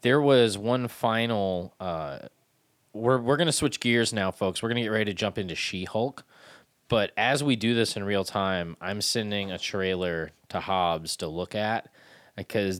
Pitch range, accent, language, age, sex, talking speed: 95-125 Hz, American, English, 20-39, male, 190 wpm